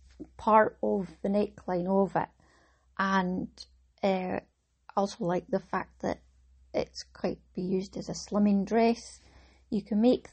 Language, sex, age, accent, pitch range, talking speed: English, female, 30-49, British, 165-215 Hz, 140 wpm